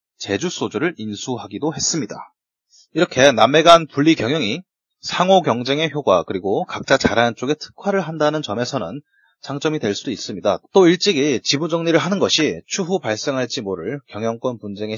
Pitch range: 120-170 Hz